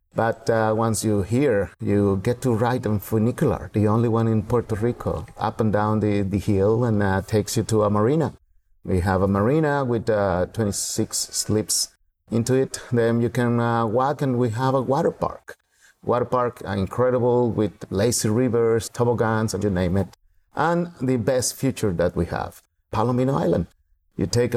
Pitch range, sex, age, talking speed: 95-120 Hz, male, 50-69, 180 wpm